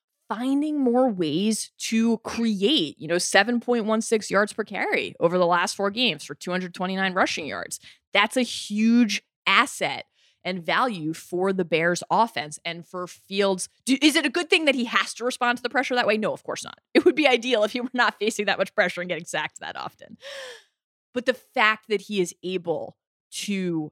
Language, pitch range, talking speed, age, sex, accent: English, 175-240 Hz, 195 wpm, 20-39, female, American